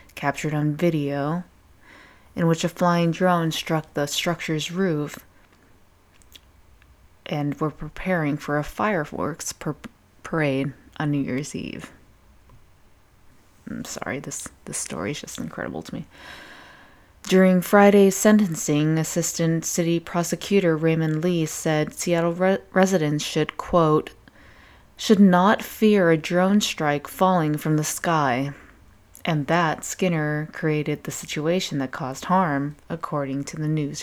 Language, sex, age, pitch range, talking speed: English, female, 20-39, 145-175 Hz, 120 wpm